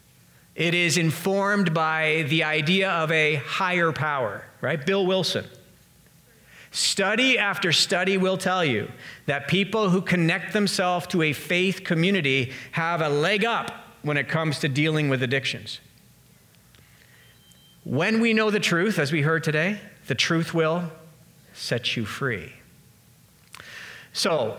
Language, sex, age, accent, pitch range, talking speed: English, male, 50-69, American, 135-180 Hz, 135 wpm